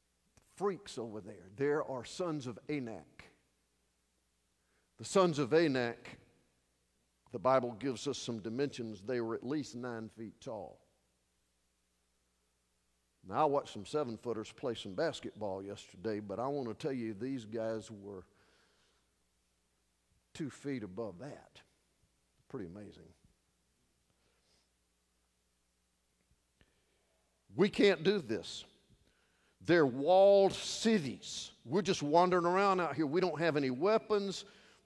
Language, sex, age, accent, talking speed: English, male, 50-69, American, 115 wpm